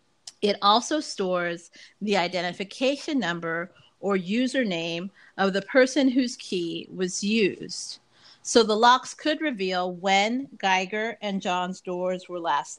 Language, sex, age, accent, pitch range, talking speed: English, female, 40-59, American, 175-200 Hz, 125 wpm